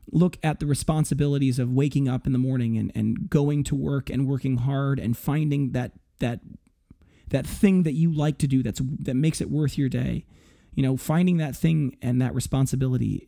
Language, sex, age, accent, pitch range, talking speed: English, male, 30-49, American, 125-160 Hz, 200 wpm